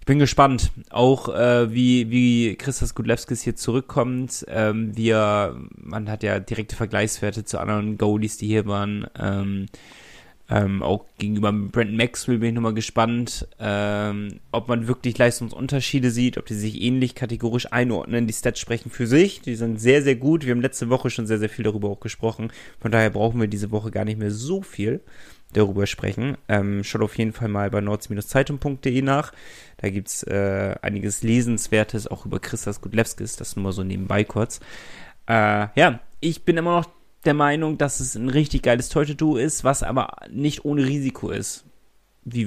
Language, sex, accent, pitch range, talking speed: German, male, German, 105-125 Hz, 180 wpm